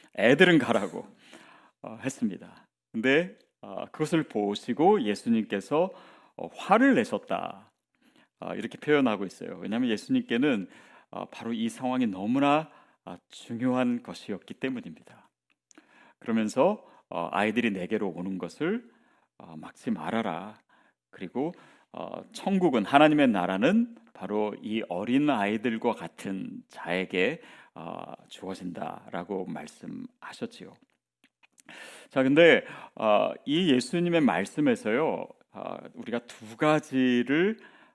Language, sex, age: Korean, male, 40-59